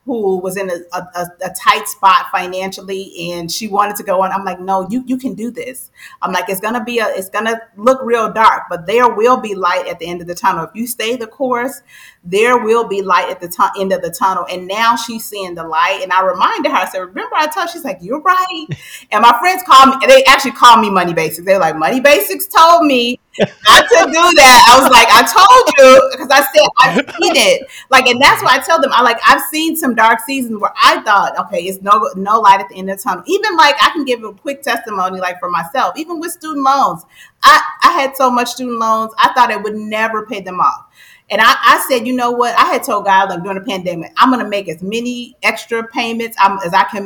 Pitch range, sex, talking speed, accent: 195-265 Hz, female, 255 wpm, American